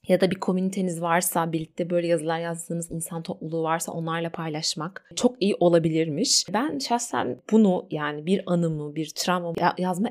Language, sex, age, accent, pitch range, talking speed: Turkish, female, 30-49, native, 170-210 Hz, 160 wpm